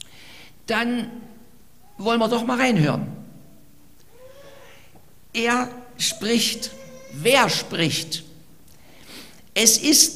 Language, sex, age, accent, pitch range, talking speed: German, male, 50-69, German, 190-245 Hz, 70 wpm